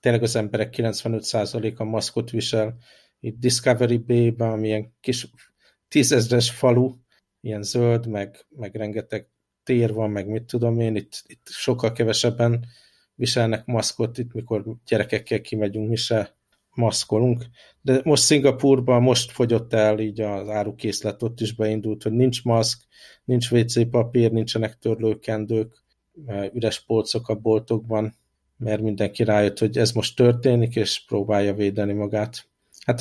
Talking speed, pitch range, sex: 130 wpm, 110-120 Hz, male